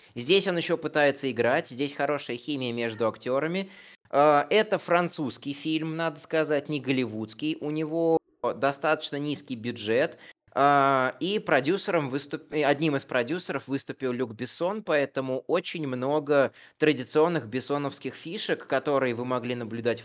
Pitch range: 120-160 Hz